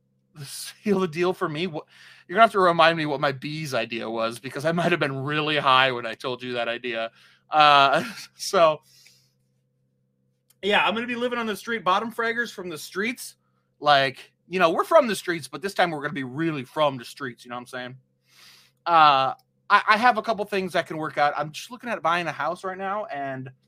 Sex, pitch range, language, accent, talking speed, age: male, 120-180 Hz, English, American, 220 wpm, 30-49